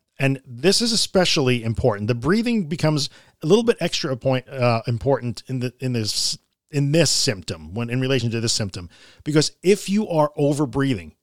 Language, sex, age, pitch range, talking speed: English, male, 40-59, 125-160 Hz, 175 wpm